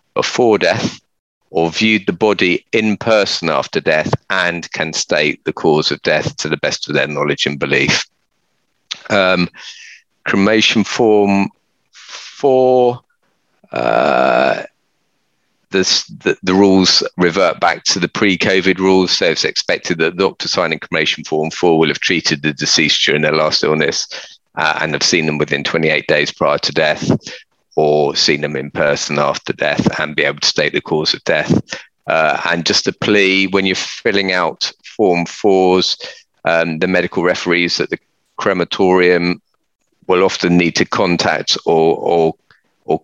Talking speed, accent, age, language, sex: 155 wpm, British, 40-59, English, male